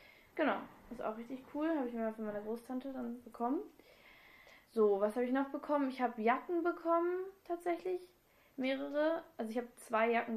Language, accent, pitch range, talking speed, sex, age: German, German, 205-260 Hz, 175 wpm, female, 10-29